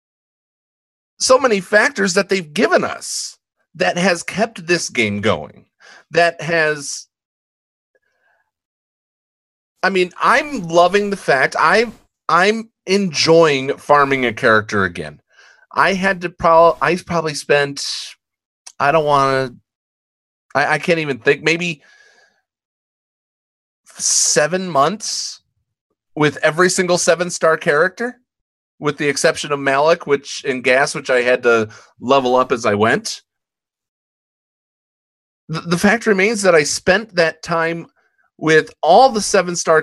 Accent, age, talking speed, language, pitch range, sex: American, 40-59, 120 wpm, English, 140-200 Hz, male